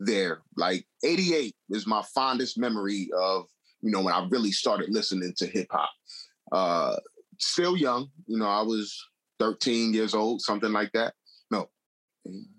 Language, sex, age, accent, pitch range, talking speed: English, male, 30-49, American, 100-145 Hz, 155 wpm